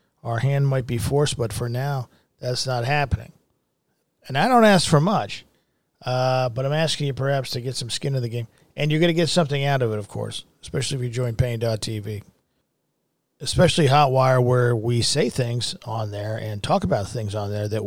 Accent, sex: American, male